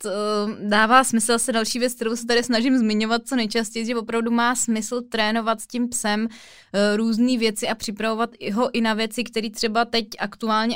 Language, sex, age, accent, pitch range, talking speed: Czech, female, 20-39, native, 200-225 Hz, 180 wpm